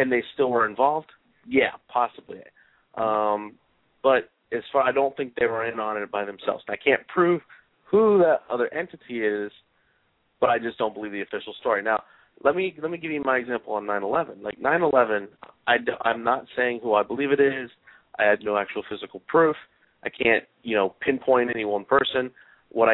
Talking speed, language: 195 wpm, English